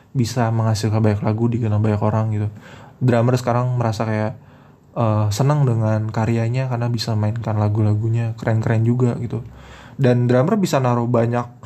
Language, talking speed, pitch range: Indonesian, 145 wpm, 115-140 Hz